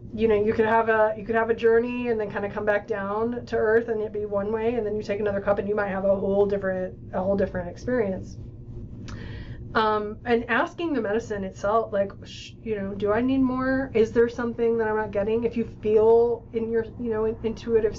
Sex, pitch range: female, 200-235 Hz